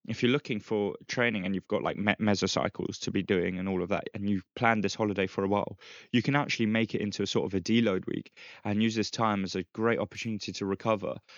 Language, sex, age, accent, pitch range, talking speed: English, male, 10-29, British, 100-115 Hz, 250 wpm